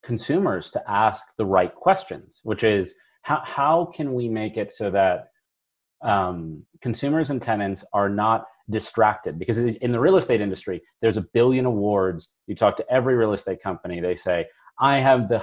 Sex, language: male, English